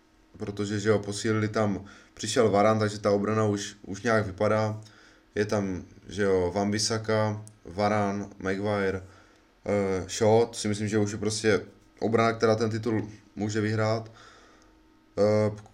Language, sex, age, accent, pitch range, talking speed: Czech, male, 20-39, native, 105-115 Hz, 135 wpm